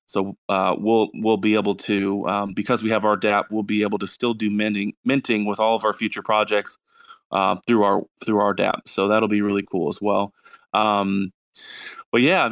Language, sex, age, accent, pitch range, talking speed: English, male, 30-49, American, 100-115 Hz, 205 wpm